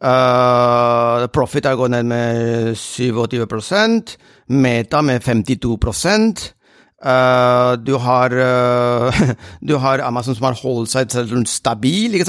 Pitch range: 115-140 Hz